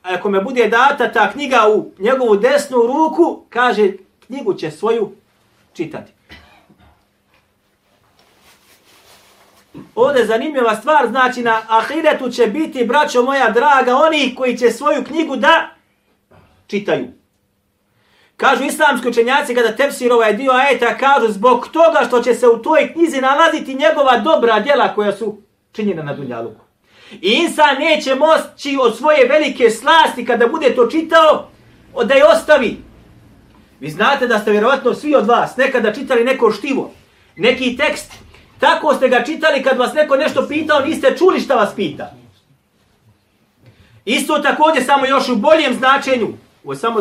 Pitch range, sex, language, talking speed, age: 225-300 Hz, male, English, 145 wpm, 40-59